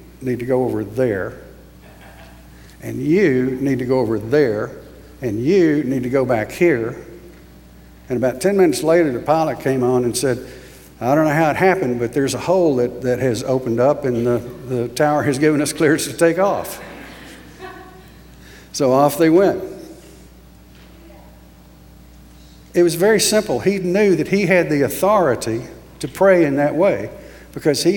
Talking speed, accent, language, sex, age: 165 wpm, American, English, male, 60-79